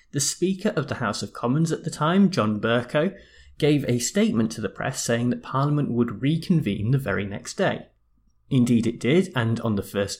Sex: male